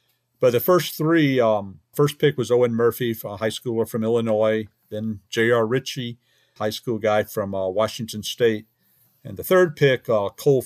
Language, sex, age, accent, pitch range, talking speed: English, male, 50-69, American, 100-125 Hz, 175 wpm